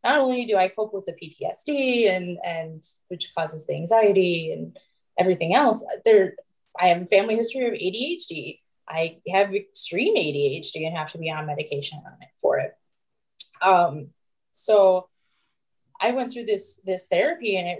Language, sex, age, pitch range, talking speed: English, female, 20-39, 160-200 Hz, 165 wpm